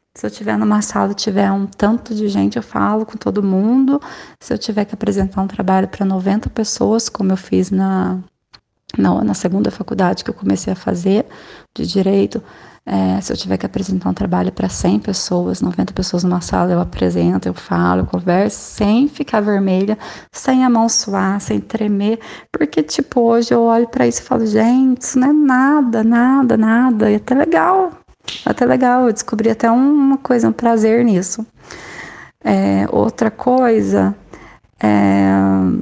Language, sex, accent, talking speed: Portuguese, female, Brazilian, 170 wpm